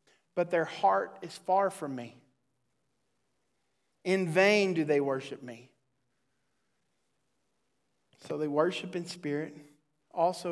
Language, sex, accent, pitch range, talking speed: English, male, American, 150-195 Hz, 110 wpm